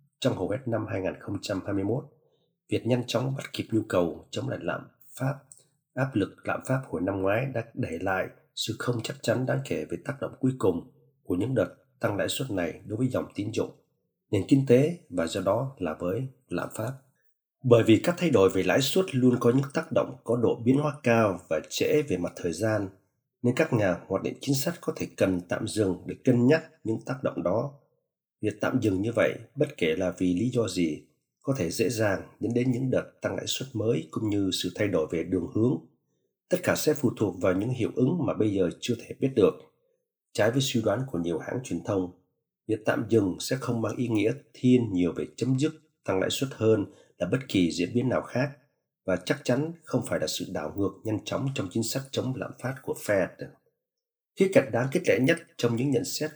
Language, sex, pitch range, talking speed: English, male, 110-145 Hz, 225 wpm